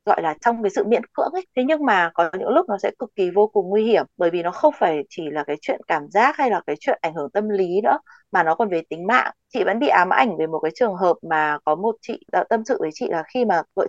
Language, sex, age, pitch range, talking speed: Vietnamese, female, 20-39, 185-255 Hz, 305 wpm